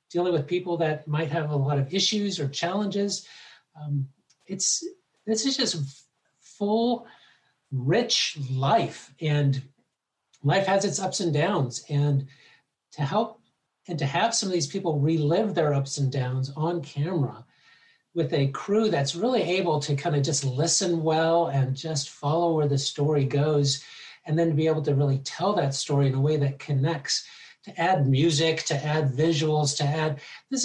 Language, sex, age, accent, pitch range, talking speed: English, male, 50-69, American, 140-175 Hz, 165 wpm